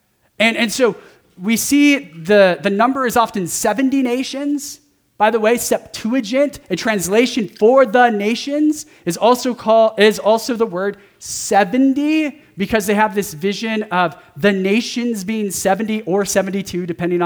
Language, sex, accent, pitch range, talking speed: English, male, American, 170-240 Hz, 145 wpm